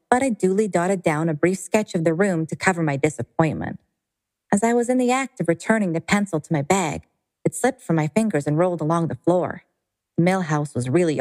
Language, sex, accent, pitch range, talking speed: English, female, American, 155-195 Hz, 230 wpm